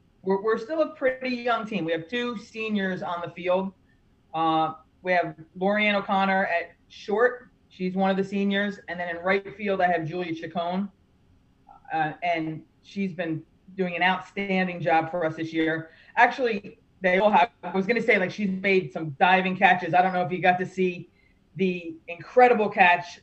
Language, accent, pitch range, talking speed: English, American, 165-195 Hz, 190 wpm